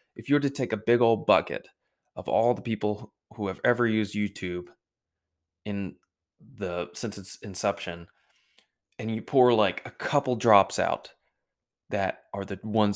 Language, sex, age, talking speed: English, male, 20-39, 160 wpm